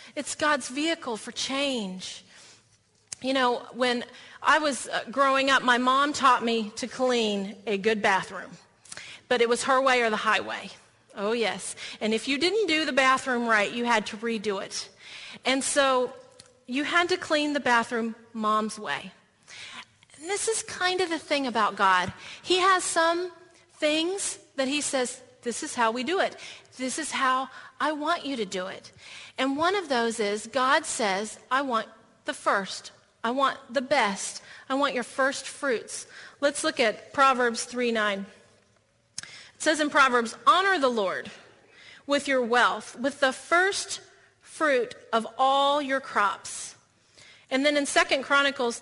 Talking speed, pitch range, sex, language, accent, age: 165 wpm, 230-300 Hz, female, English, American, 40-59